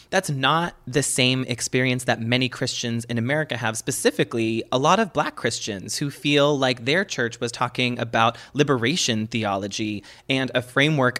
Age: 30-49